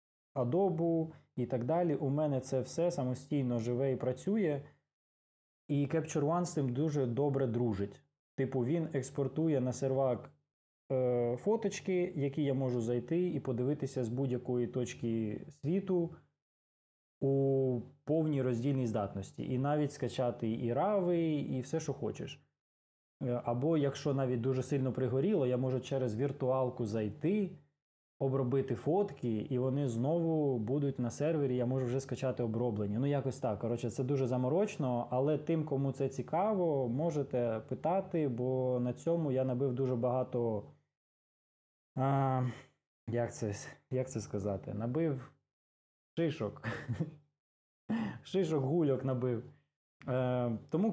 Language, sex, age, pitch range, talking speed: Ukrainian, male, 20-39, 120-150 Hz, 125 wpm